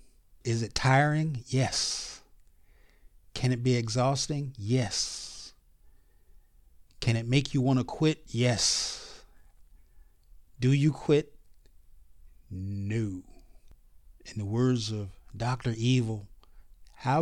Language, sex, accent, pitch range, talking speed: English, male, American, 80-130 Hz, 100 wpm